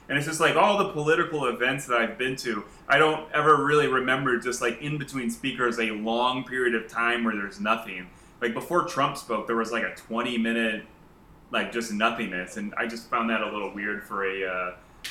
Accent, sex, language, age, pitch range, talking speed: American, male, English, 20-39, 115-145 Hz, 215 wpm